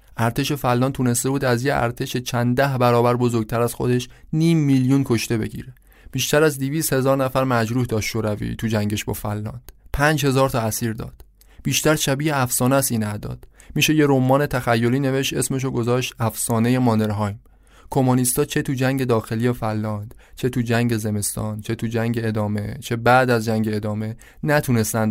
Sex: male